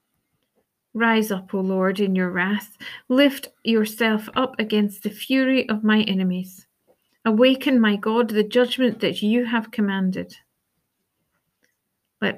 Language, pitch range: English, 200-245 Hz